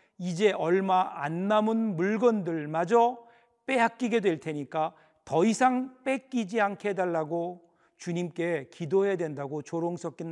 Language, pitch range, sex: Korean, 170-215 Hz, male